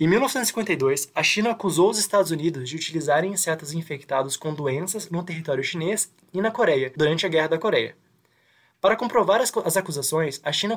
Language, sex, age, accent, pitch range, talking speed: Portuguese, male, 20-39, Brazilian, 155-205 Hz, 175 wpm